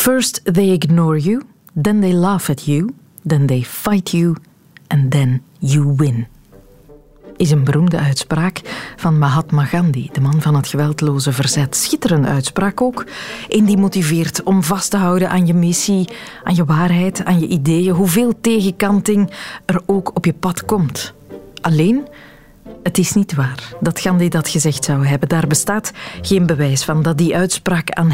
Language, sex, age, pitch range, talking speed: Dutch, female, 40-59, 150-200 Hz, 165 wpm